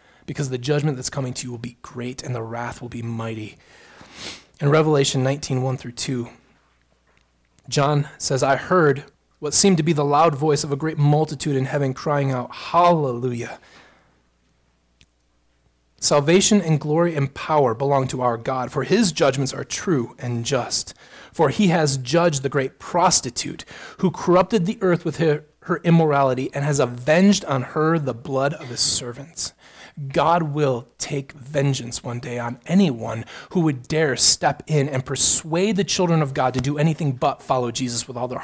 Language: English